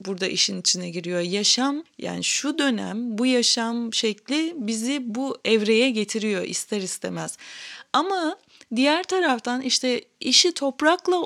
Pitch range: 215-280 Hz